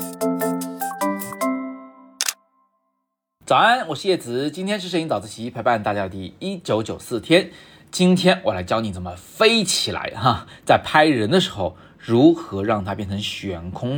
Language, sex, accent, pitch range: Chinese, male, native, 100-145 Hz